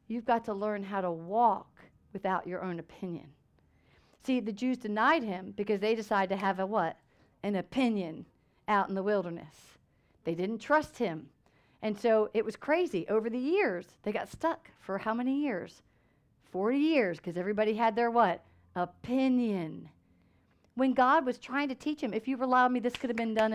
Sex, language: female, English